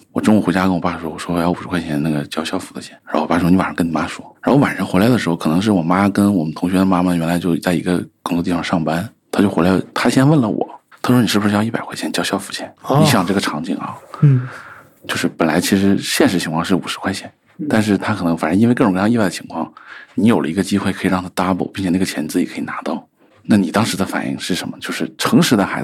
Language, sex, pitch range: Chinese, male, 85-110 Hz